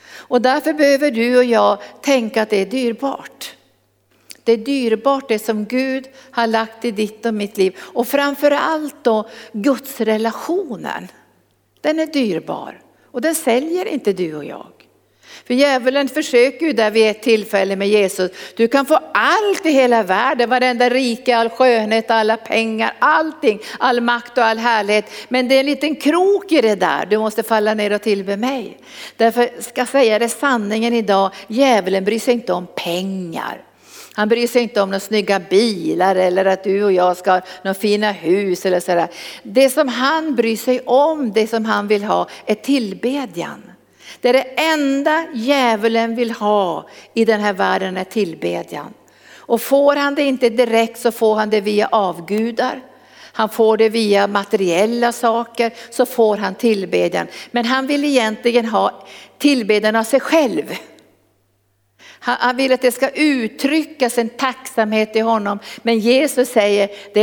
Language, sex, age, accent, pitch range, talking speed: Swedish, female, 60-79, native, 205-260 Hz, 170 wpm